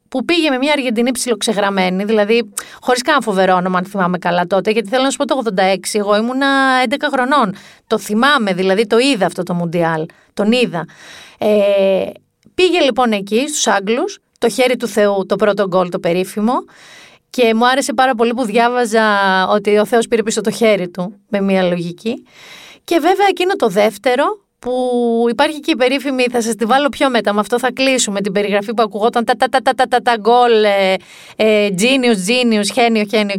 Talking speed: 185 wpm